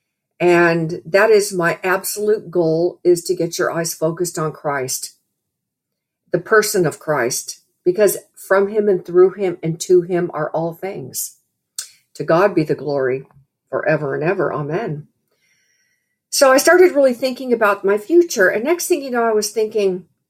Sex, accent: female, American